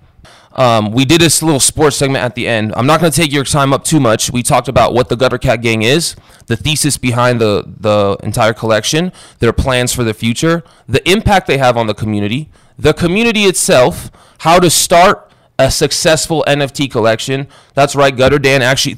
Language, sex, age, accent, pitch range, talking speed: English, male, 20-39, American, 110-145 Hz, 200 wpm